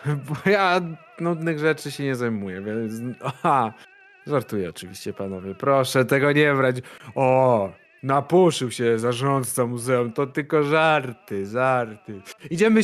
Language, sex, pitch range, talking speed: Polish, male, 125-180 Hz, 120 wpm